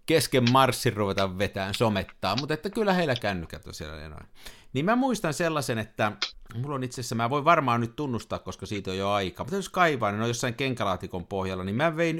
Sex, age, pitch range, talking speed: male, 50-69, 95-135 Hz, 215 wpm